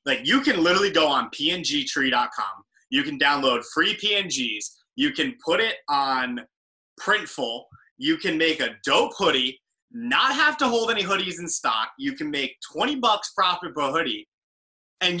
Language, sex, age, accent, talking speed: English, male, 20-39, American, 160 wpm